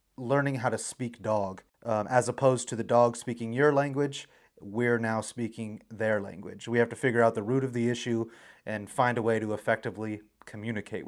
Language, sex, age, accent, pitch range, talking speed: English, male, 30-49, American, 110-125 Hz, 195 wpm